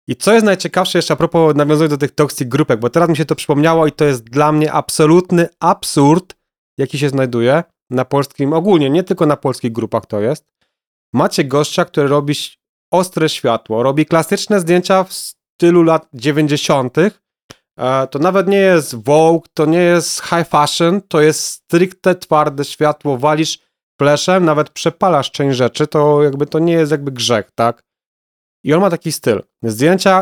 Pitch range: 140-170 Hz